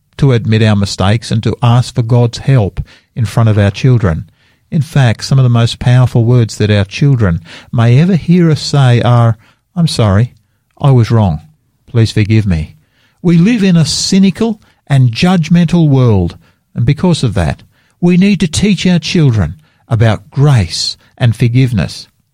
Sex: male